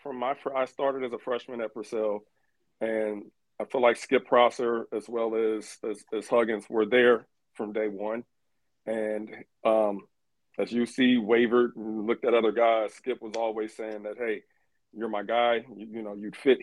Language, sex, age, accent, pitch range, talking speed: English, male, 40-59, American, 105-115 Hz, 180 wpm